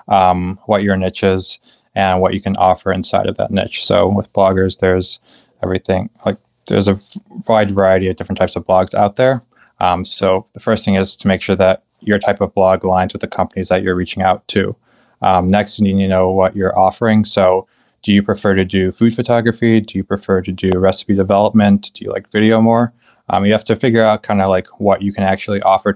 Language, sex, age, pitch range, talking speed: English, male, 20-39, 95-105 Hz, 225 wpm